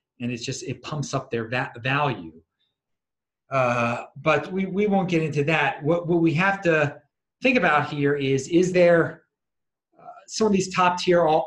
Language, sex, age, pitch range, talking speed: English, male, 30-49, 115-150 Hz, 180 wpm